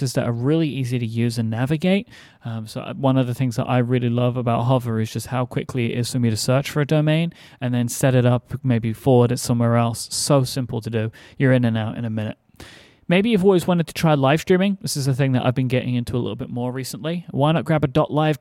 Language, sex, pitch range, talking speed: English, male, 120-140 Hz, 265 wpm